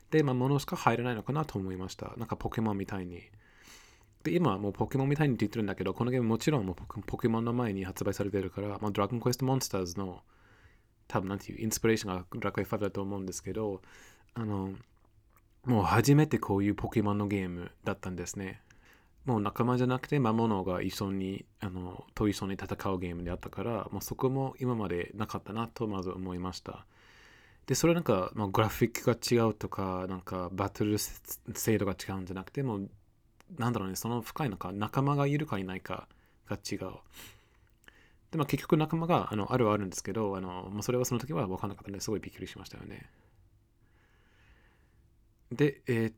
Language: Japanese